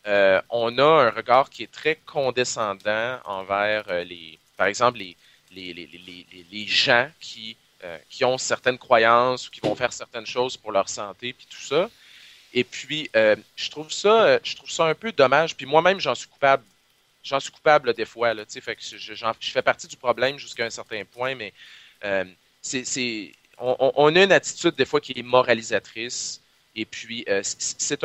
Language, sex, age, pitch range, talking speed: French, male, 30-49, 110-145 Hz, 195 wpm